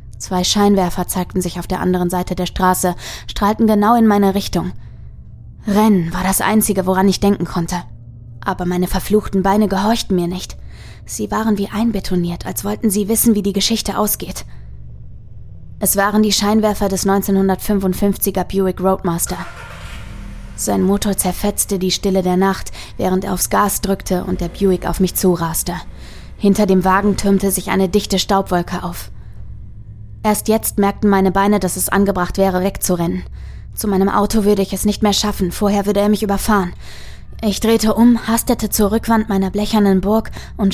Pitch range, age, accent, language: 180-205 Hz, 20-39, German, German